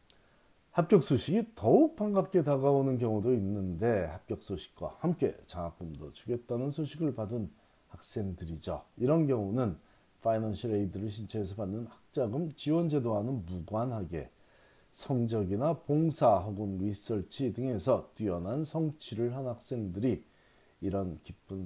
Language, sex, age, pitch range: Korean, male, 40-59, 100-145 Hz